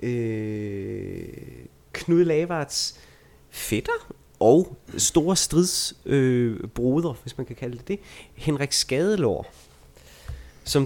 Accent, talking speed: native, 95 wpm